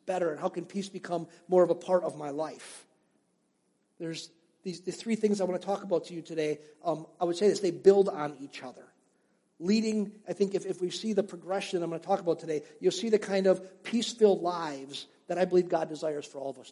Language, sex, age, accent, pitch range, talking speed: English, male, 50-69, American, 160-200 Hz, 240 wpm